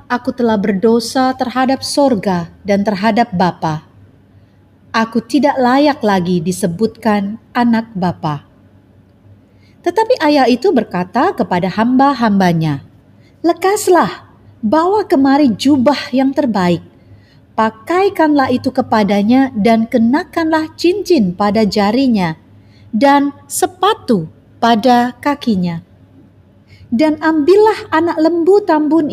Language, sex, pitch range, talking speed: Indonesian, female, 180-280 Hz, 90 wpm